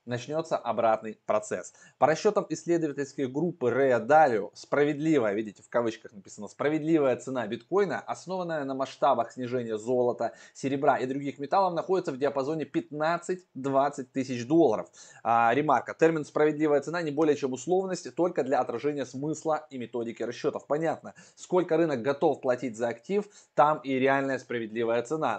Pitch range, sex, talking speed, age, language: 120-155 Hz, male, 140 wpm, 20-39, Russian